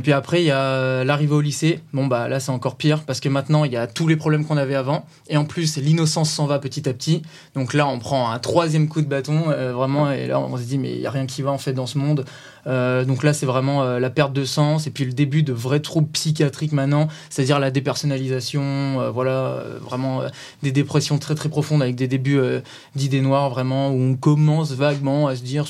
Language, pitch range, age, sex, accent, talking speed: French, 135-155 Hz, 20-39, male, French, 255 wpm